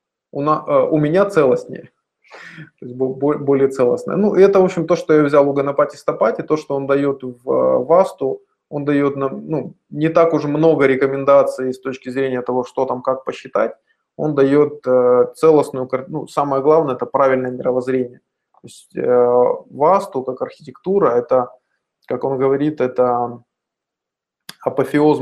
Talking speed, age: 150 wpm, 20-39